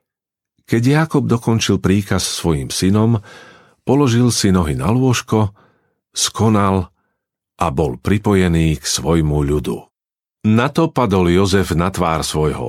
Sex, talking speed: male, 125 wpm